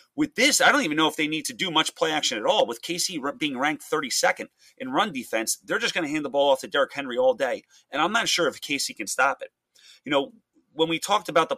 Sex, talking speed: male, 275 wpm